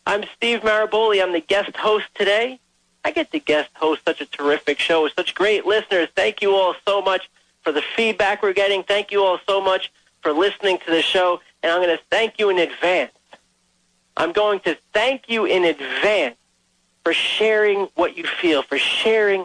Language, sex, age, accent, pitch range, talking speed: English, male, 40-59, American, 145-200 Hz, 195 wpm